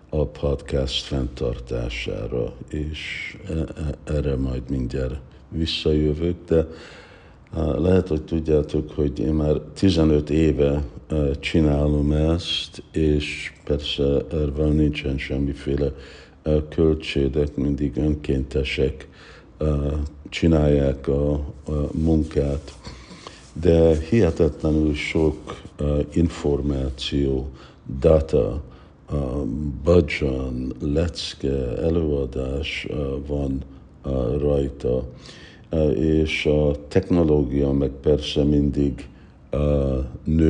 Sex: male